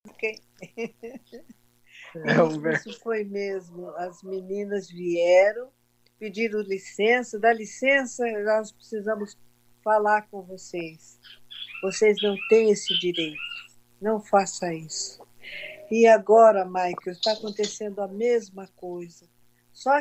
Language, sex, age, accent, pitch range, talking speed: Portuguese, female, 50-69, Brazilian, 160-215 Hz, 100 wpm